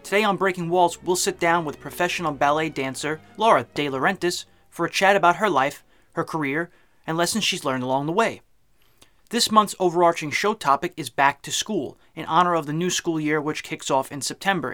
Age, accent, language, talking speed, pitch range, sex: 30-49, American, English, 205 wpm, 155-195 Hz, male